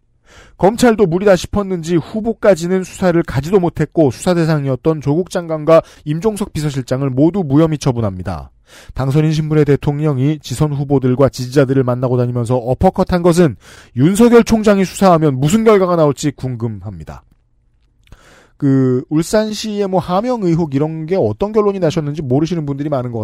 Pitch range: 130-185 Hz